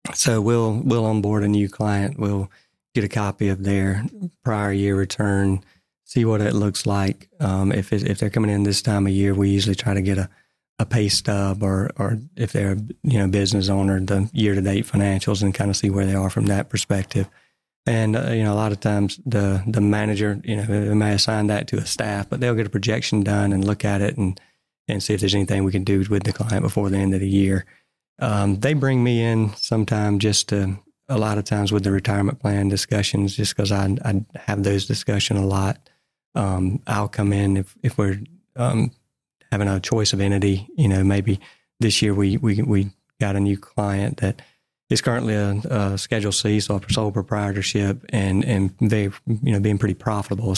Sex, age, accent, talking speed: male, 30-49, American, 215 wpm